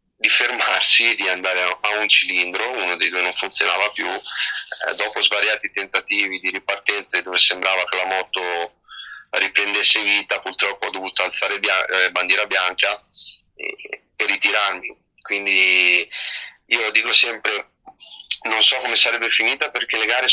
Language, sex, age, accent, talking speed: Italian, male, 30-49, native, 140 wpm